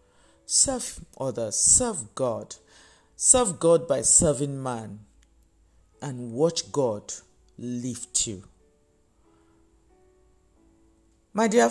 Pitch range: 115-175 Hz